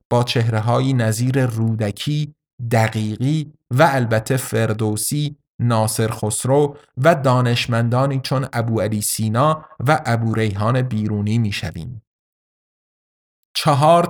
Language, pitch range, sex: Persian, 115-145 Hz, male